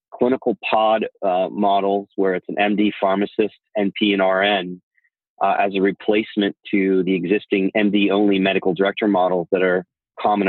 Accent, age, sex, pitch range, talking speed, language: American, 30-49, male, 95-105 Hz, 150 wpm, English